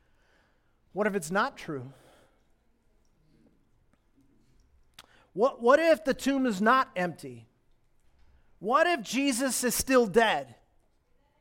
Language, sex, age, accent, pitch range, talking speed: English, male, 40-59, American, 180-245 Hz, 100 wpm